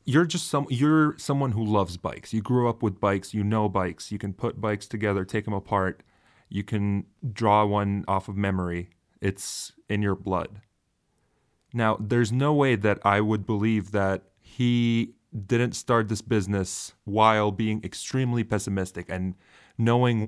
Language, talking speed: English, 165 wpm